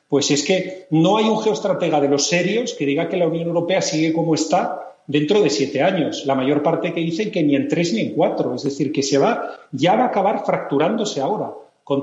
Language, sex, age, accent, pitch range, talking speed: Spanish, male, 40-59, Spanish, 150-175 Hz, 235 wpm